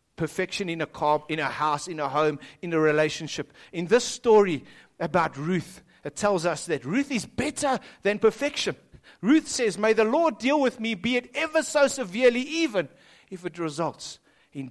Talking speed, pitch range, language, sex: 185 wpm, 155-250 Hz, English, male